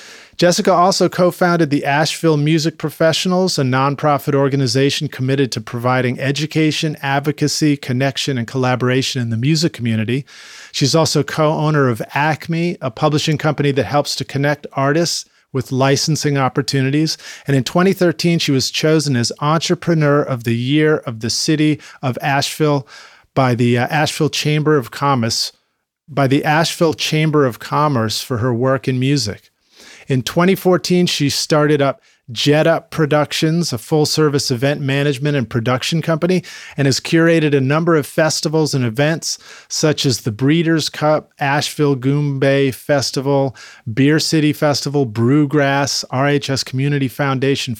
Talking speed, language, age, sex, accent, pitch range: 140 wpm, English, 40-59, male, American, 135-155 Hz